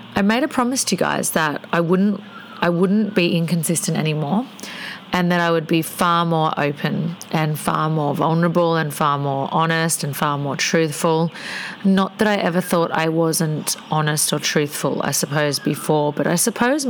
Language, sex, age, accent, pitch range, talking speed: English, female, 40-59, Australian, 155-185 Hz, 180 wpm